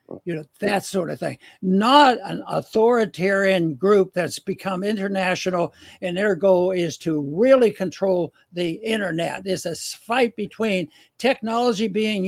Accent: American